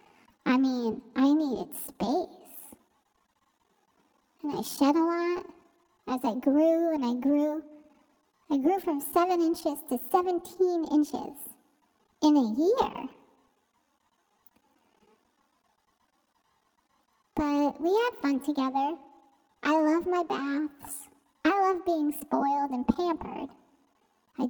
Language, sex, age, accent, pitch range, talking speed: English, male, 40-59, American, 270-330 Hz, 105 wpm